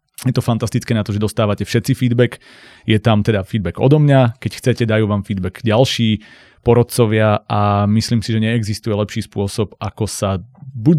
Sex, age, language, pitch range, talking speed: male, 30-49, Slovak, 100-120 Hz, 175 wpm